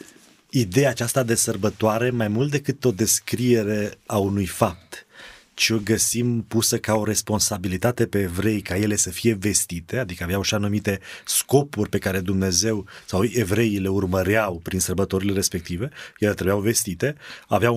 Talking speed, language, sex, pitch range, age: 150 wpm, Romanian, male, 105-130 Hz, 30-49